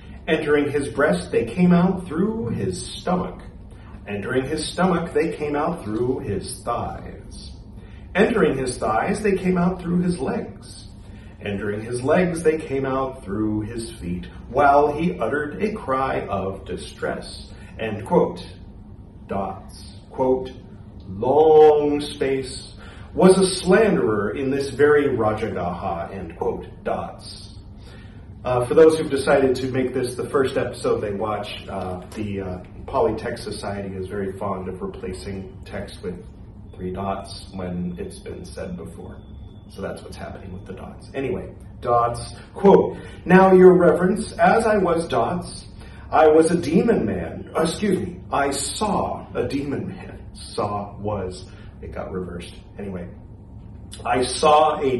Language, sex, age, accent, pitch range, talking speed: English, male, 40-59, American, 100-145 Hz, 140 wpm